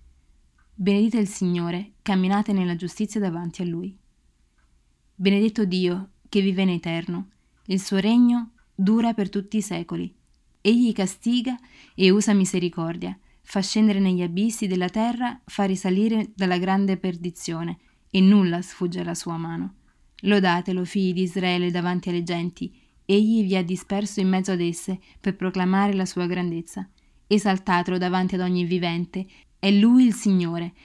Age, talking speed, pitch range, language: 20-39, 145 wpm, 175-205 Hz, Italian